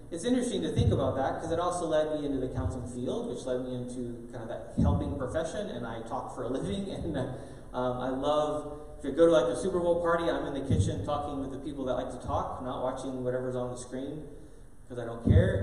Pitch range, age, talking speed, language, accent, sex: 120-155 Hz, 30-49, 255 wpm, English, American, male